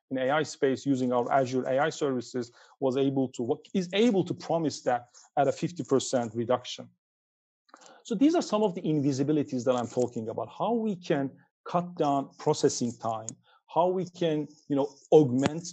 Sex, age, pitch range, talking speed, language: male, 40-59, 130-170 Hz, 170 wpm, English